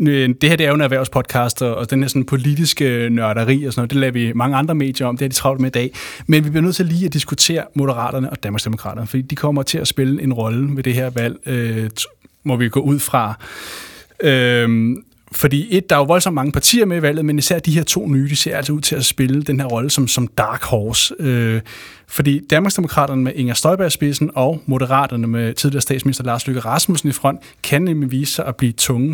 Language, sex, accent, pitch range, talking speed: Danish, male, native, 125-150 Hz, 235 wpm